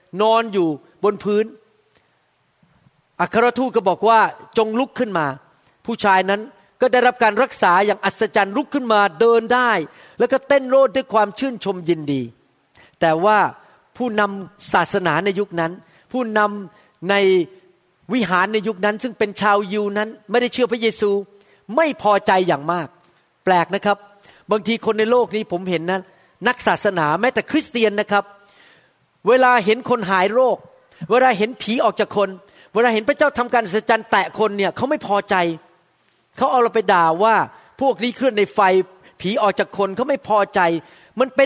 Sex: male